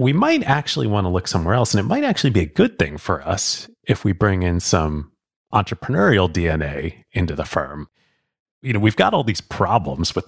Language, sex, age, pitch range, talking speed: English, male, 30-49, 85-120 Hz, 210 wpm